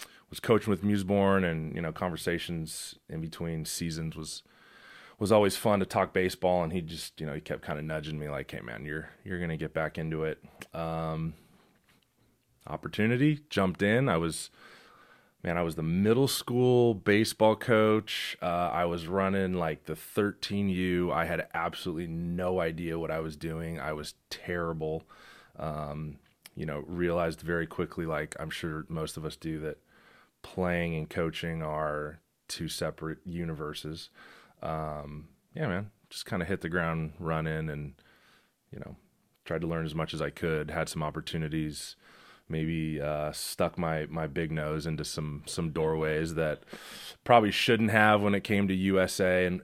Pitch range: 80-95 Hz